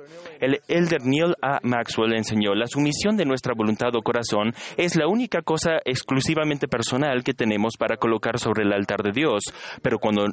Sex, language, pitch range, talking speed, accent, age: male, Spanish, 110-145 Hz, 175 wpm, Mexican, 30-49